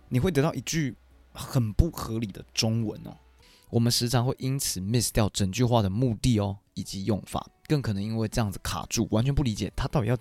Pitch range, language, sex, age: 100-125 Hz, Chinese, male, 20-39